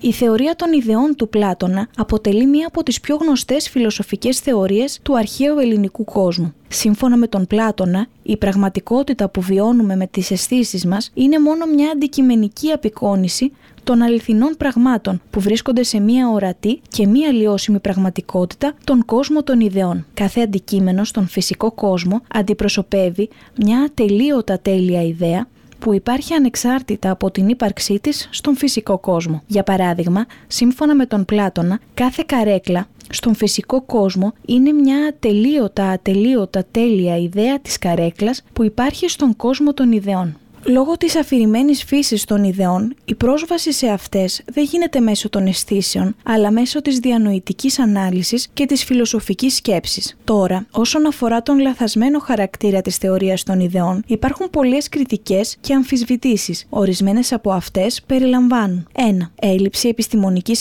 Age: 20-39